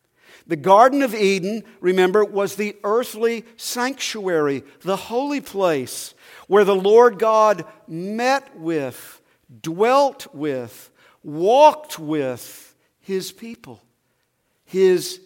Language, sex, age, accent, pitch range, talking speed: English, male, 50-69, American, 155-225 Hz, 100 wpm